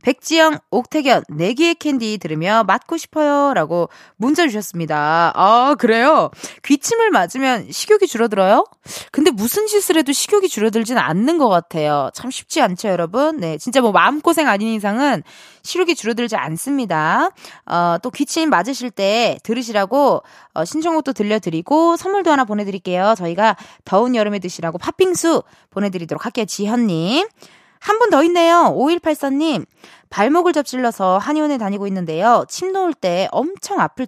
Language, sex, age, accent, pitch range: Korean, female, 20-39, native, 190-310 Hz